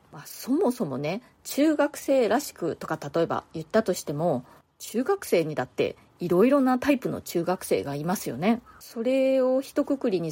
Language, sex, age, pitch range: Japanese, female, 30-49, 165-245 Hz